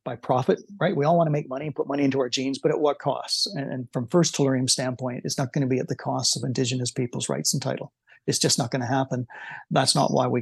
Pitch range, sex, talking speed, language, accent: 130-160 Hz, male, 275 wpm, English, American